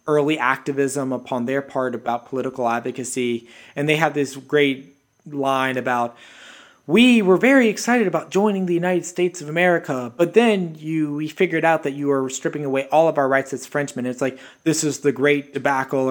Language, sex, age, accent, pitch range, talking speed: English, male, 30-49, American, 130-155 Hz, 190 wpm